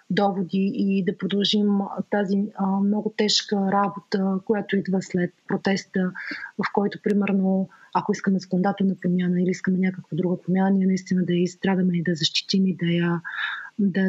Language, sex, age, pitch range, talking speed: Bulgarian, female, 30-49, 190-225 Hz, 145 wpm